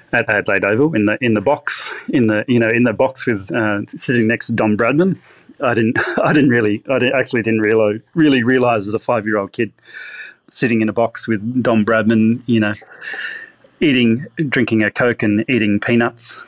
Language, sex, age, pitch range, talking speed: English, male, 30-49, 105-120 Hz, 190 wpm